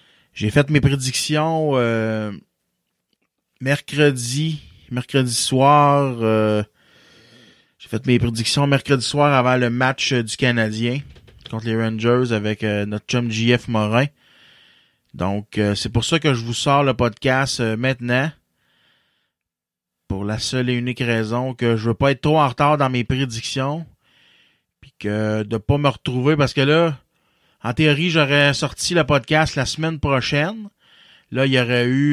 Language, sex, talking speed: French, male, 155 wpm